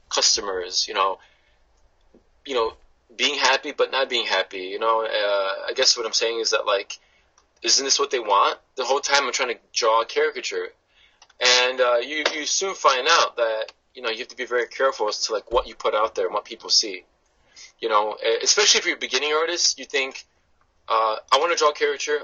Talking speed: 220 wpm